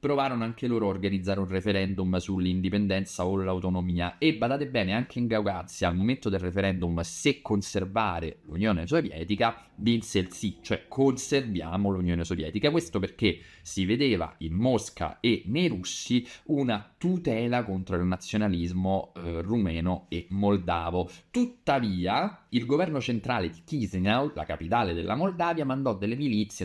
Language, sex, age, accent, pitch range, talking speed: Italian, male, 30-49, native, 90-120 Hz, 140 wpm